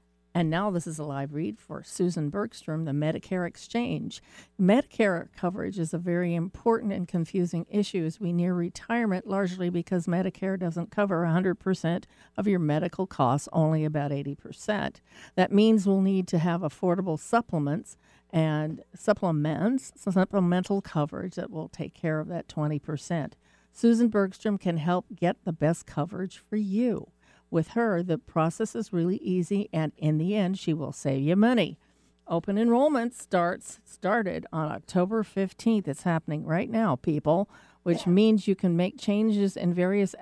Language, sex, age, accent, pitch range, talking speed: English, female, 50-69, American, 160-205 Hz, 155 wpm